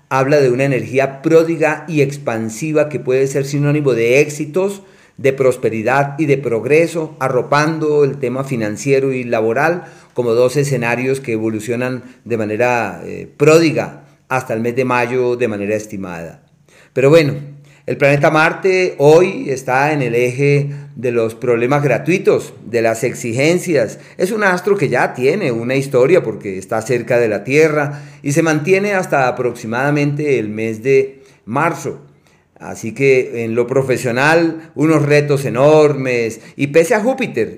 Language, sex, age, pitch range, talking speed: Spanish, male, 40-59, 120-150 Hz, 150 wpm